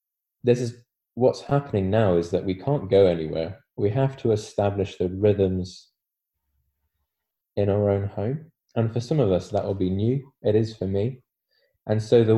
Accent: British